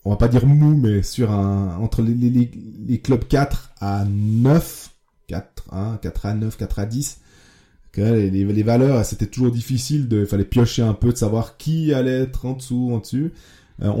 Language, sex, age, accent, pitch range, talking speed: French, male, 20-39, French, 100-130 Hz, 195 wpm